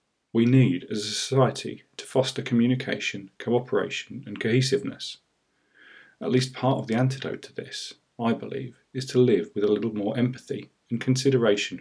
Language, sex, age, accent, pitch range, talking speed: English, male, 40-59, British, 100-130 Hz, 160 wpm